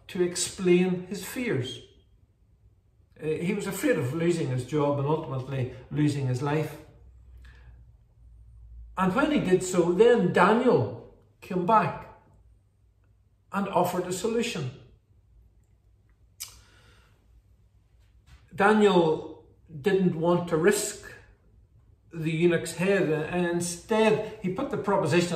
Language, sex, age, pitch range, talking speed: English, male, 50-69, 115-180 Hz, 105 wpm